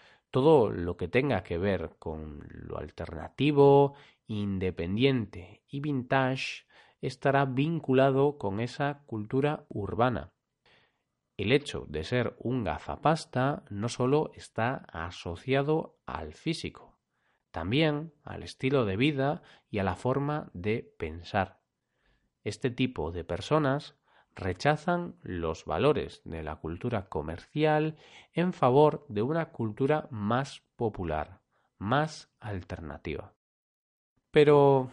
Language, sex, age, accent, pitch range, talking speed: Spanish, male, 40-59, Spanish, 95-140 Hz, 105 wpm